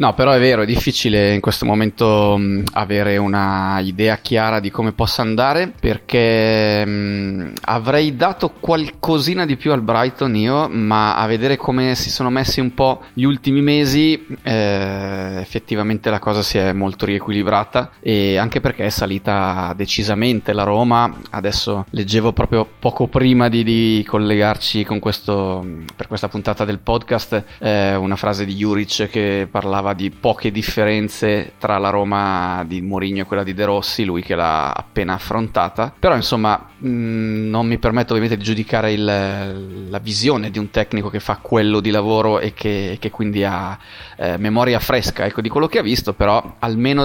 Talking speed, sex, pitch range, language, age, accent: 160 wpm, male, 100-120 Hz, Italian, 20-39, native